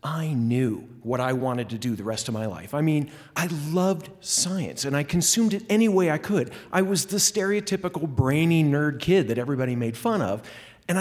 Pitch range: 125-190 Hz